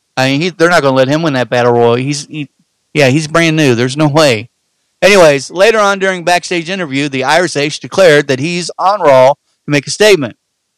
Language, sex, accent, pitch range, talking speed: English, male, American, 140-175 Hz, 215 wpm